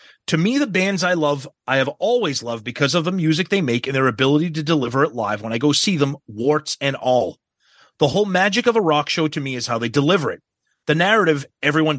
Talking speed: 240 wpm